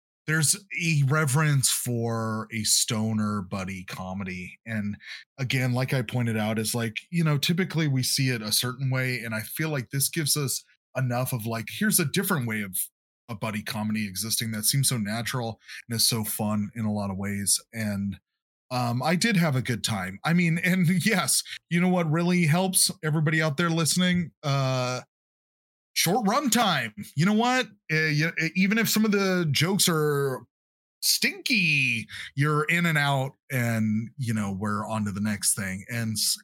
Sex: male